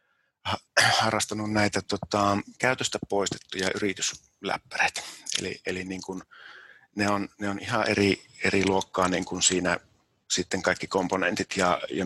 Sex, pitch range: male, 95-105 Hz